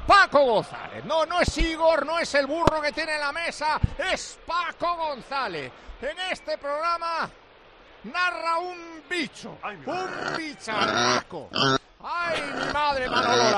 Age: 50-69